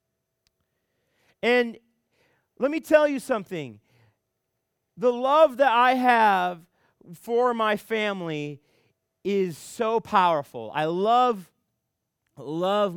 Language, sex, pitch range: English, male, 155-220 Hz